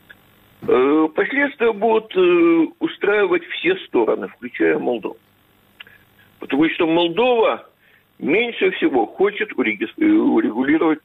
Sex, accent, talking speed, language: male, native, 75 wpm, Ukrainian